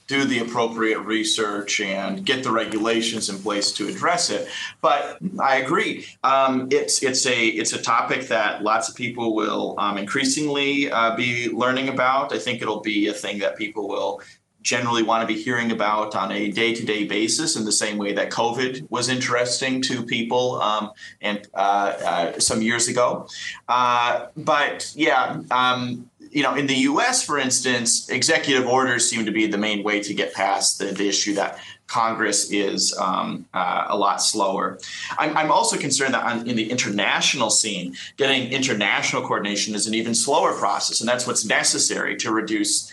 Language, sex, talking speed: English, male, 175 wpm